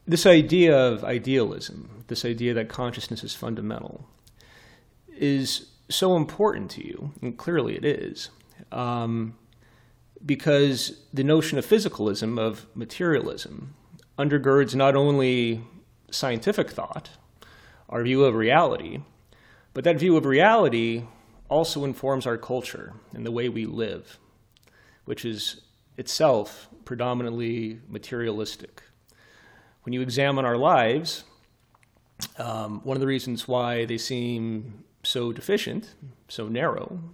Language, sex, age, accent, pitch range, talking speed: English, male, 30-49, American, 115-140 Hz, 115 wpm